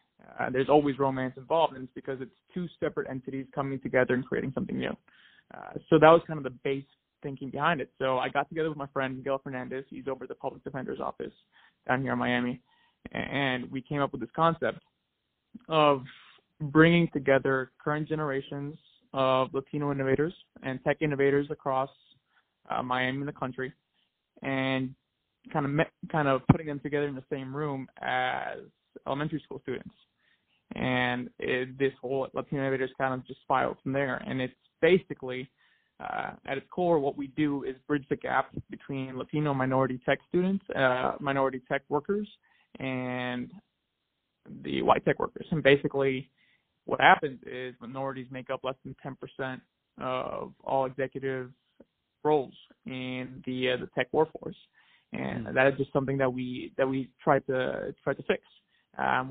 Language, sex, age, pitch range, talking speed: English, male, 20-39, 130-145 Hz, 165 wpm